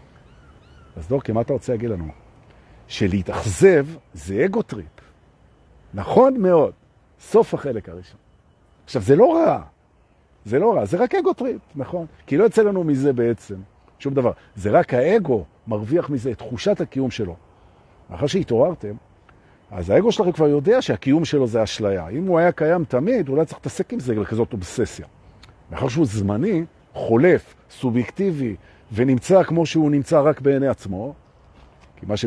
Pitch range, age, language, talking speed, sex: 100-155 Hz, 50-69, Hebrew, 140 wpm, male